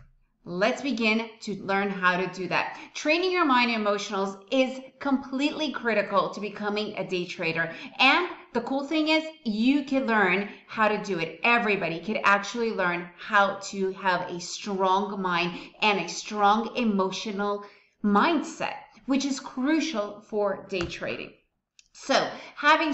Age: 30-49